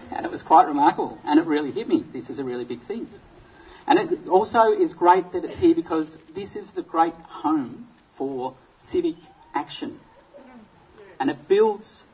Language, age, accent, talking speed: English, 50-69, Australian, 180 wpm